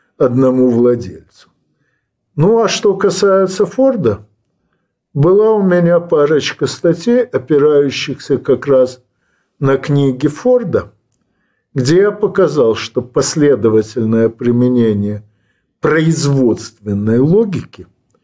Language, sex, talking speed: Russian, male, 85 wpm